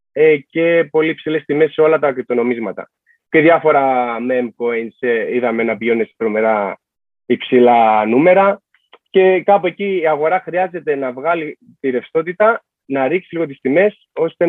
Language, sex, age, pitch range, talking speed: Greek, male, 30-49, 135-190 Hz, 135 wpm